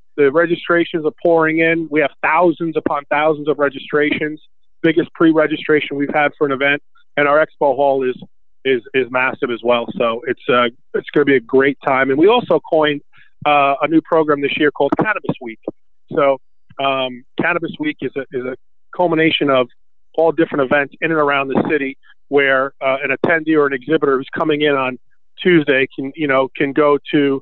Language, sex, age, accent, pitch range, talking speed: English, male, 40-59, American, 135-155 Hz, 195 wpm